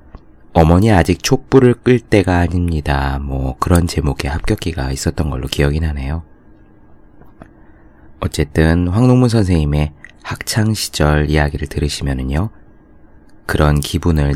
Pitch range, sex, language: 70-90 Hz, male, Korean